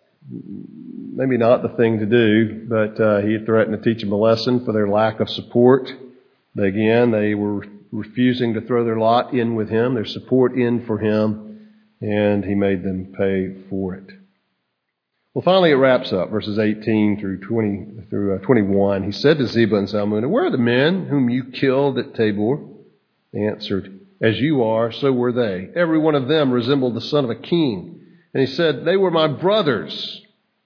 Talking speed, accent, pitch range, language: 190 wpm, American, 105-135 Hz, English